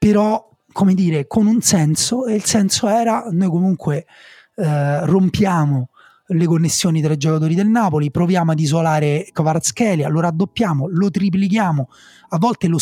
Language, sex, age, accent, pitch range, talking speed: Italian, male, 30-49, native, 140-175 Hz, 150 wpm